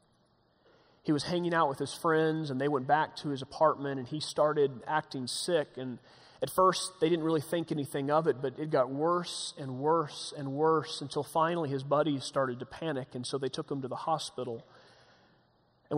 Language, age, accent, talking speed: English, 30-49, American, 200 wpm